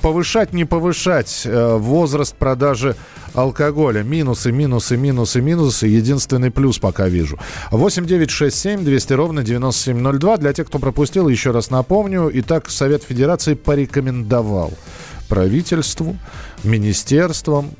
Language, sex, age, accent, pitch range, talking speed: Russian, male, 40-59, native, 105-150 Hz, 100 wpm